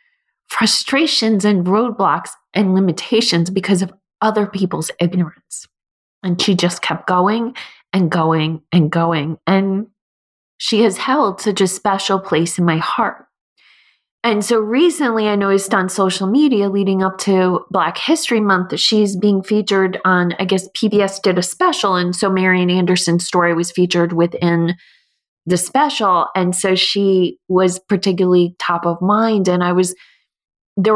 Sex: female